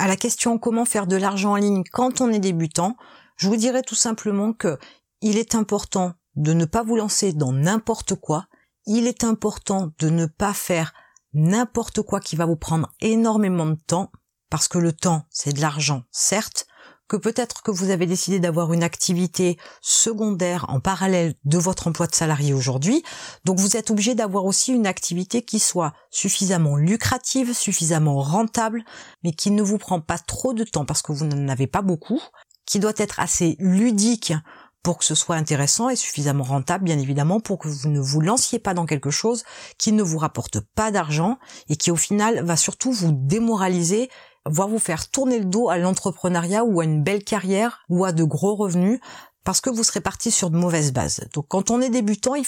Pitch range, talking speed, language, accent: 165-225 Hz, 200 wpm, French, French